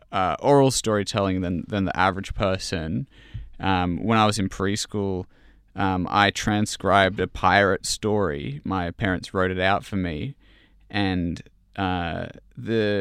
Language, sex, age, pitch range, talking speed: English, male, 20-39, 95-110 Hz, 140 wpm